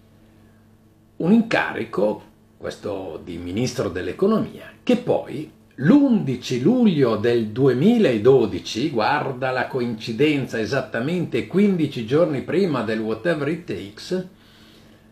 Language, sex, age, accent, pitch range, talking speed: Italian, male, 50-69, native, 110-160 Hz, 90 wpm